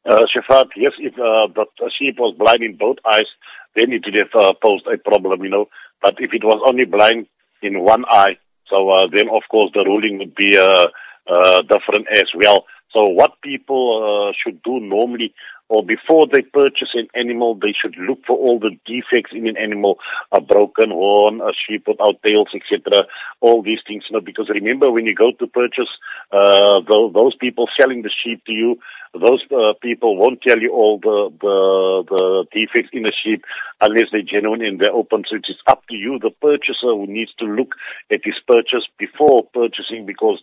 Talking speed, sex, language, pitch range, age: 200 wpm, male, English, 105-125 Hz, 50-69